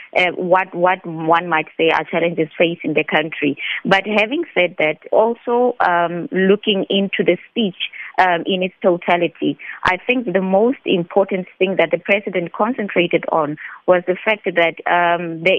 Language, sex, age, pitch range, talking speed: English, female, 20-39, 165-190 Hz, 165 wpm